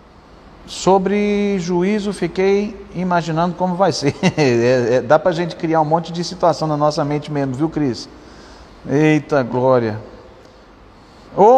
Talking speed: 135 wpm